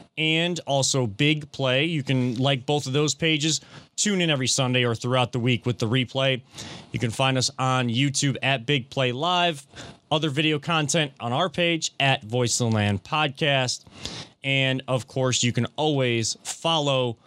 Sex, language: male, English